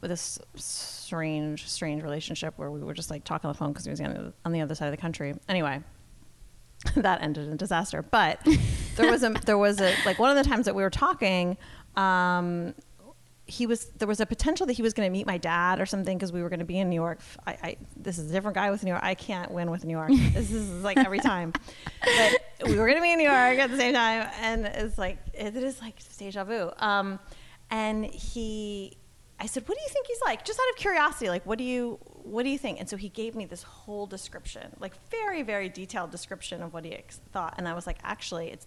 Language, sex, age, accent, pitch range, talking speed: English, female, 30-49, American, 175-225 Hz, 240 wpm